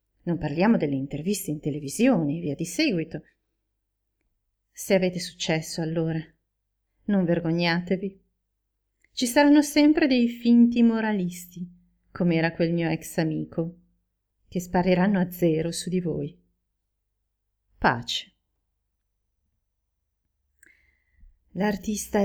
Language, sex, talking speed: Italian, female, 95 wpm